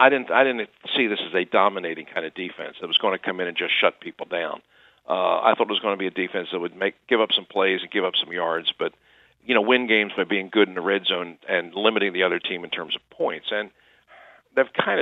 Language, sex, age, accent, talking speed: English, male, 50-69, American, 275 wpm